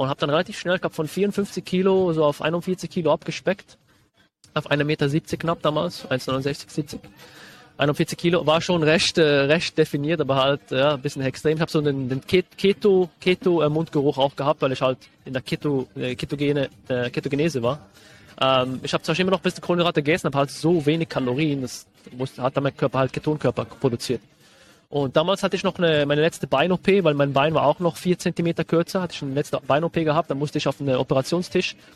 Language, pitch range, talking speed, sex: German, 135-165 Hz, 210 wpm, male